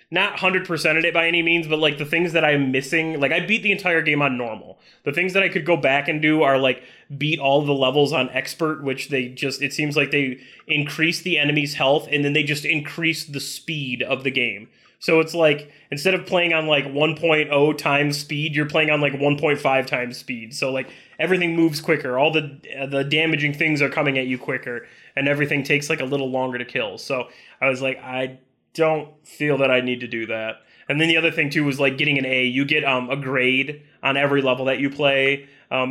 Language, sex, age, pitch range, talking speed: English, male, 20-39, 135-155 Hz, 230 wpm